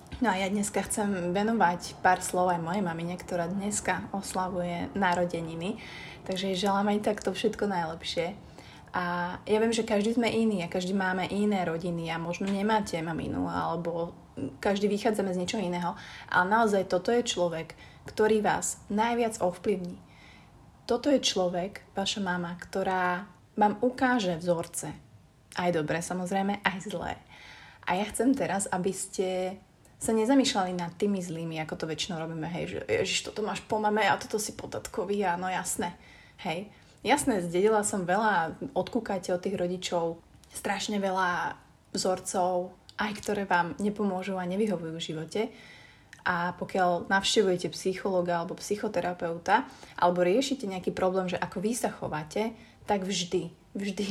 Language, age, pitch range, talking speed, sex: Slovak, 30-49, 175-210 Hz, 145 wpm, female